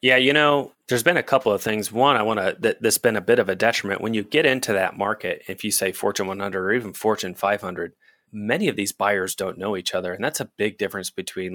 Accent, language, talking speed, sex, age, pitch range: American, English, 255 wpm, male, 30-49, 90-105 Hz